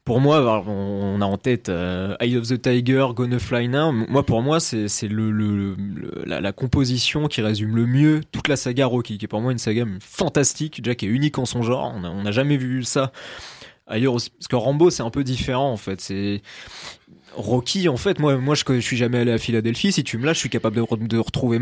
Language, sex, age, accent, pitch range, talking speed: French, male, 20-39, French, 115-140 Hz, 235 wpm